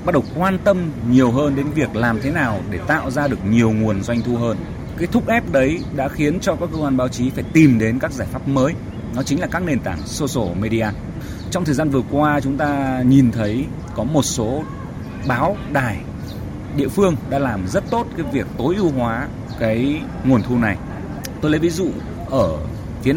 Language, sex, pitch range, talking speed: Vietnamese, male, 110-145 Hz, 210 wpm